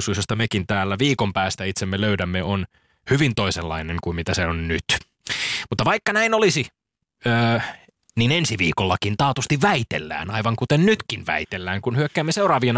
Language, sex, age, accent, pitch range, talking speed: Finnish, male, 20-39, native, 105-150 Hz, 145 wpm